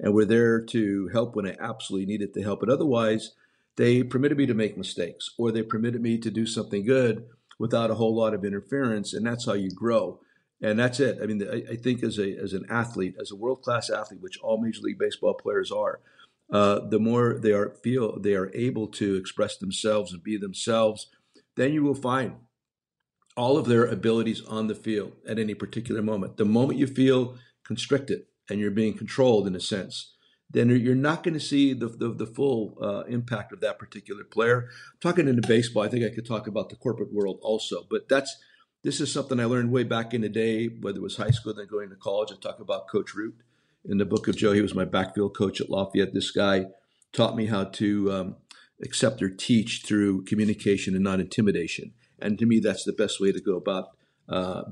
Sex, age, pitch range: male, 50-69, 105-125 Hz